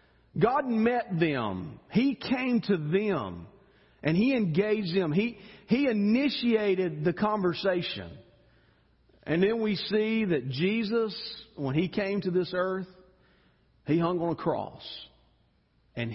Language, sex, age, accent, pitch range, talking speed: English, male, 40-59, American, 140-200 Hz, 125 wpm